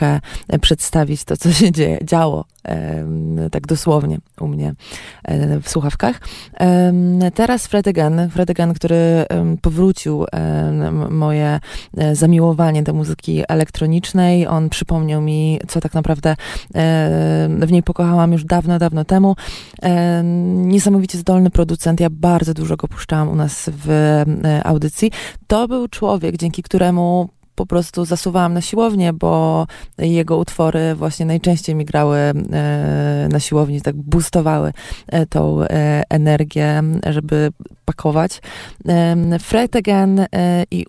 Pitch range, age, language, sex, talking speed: 150-175 Hz, 20-39, Polish, female, 130 wpm